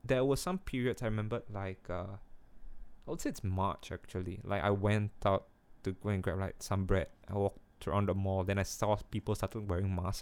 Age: 20-39